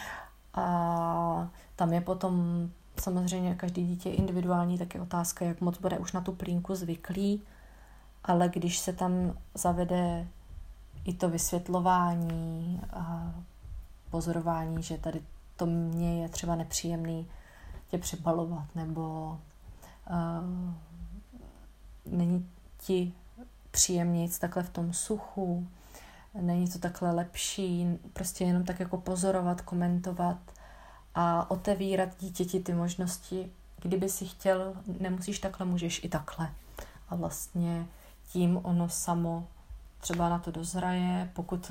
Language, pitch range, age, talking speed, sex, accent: Czech, 170-185 Hz, 30-49, 115 wpm, female, native